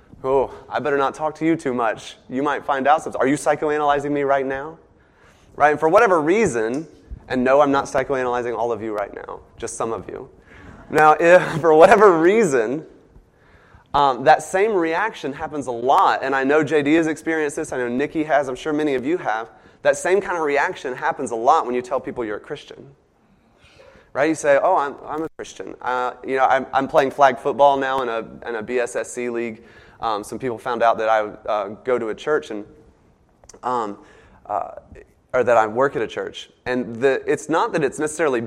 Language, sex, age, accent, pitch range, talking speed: English, male, 30-49, American, 130-155 Hz, 210 wpm